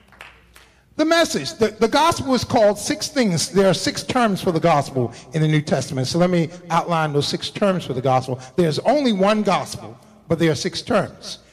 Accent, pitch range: American, 150-210 Hz